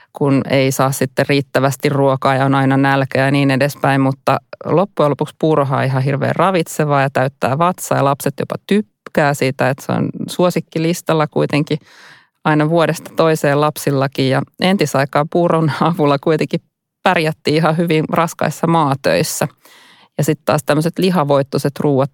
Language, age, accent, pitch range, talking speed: Finnish, 30-49, native, 140-160 Hz, 145 wpm